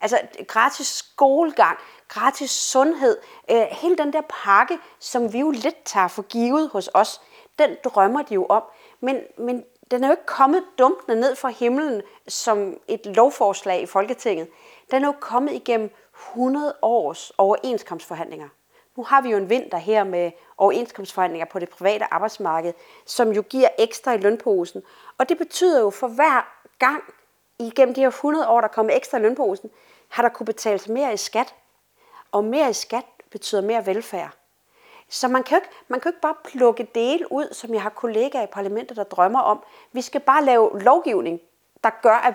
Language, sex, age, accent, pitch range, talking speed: Danish, female, 30-49, native, 210-300 Hz, 180 wpm